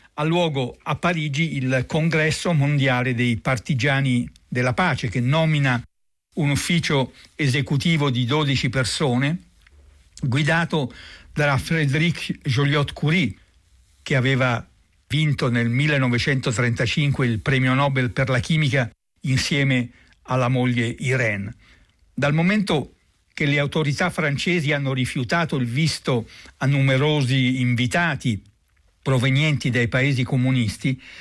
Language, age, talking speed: Italian, 60-79, 110 wpm